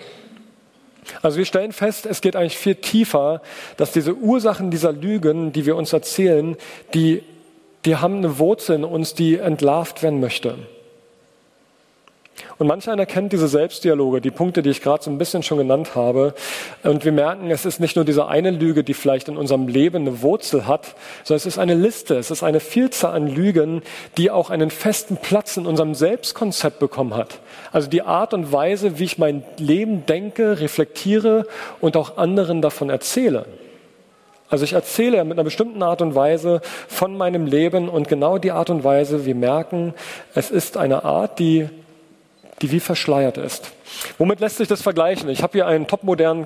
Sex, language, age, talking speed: male, German, 40-59, 180 wpm